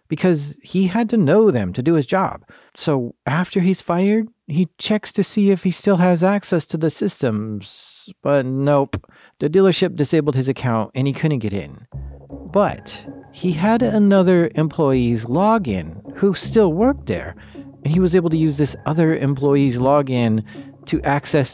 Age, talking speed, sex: 40-59, 165 wpm, male